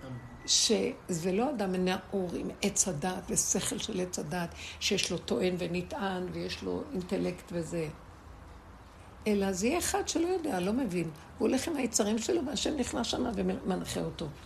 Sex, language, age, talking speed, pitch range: female, Hebrew, 60-79, 155 wpm, 170-220 Hz